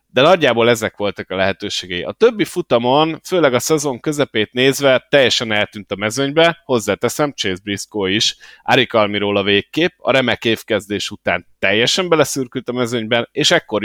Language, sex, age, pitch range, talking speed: Hungarian, male, 30-49, 100-135 Hz, 150 wpm